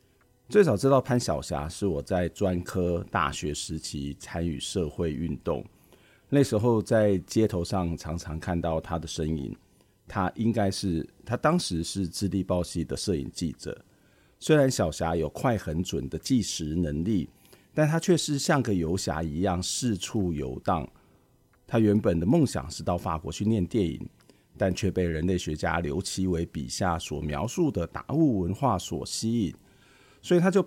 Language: Chinese